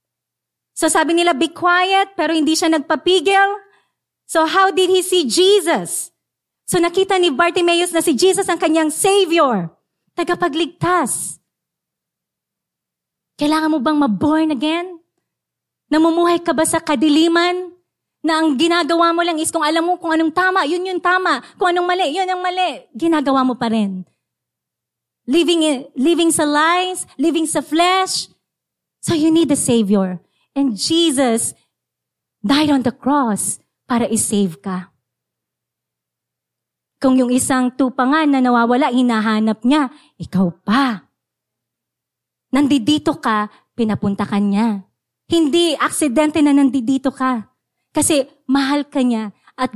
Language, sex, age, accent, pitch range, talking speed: English, female, 30-49, Filipino, 250-350 Hz, 130 wpm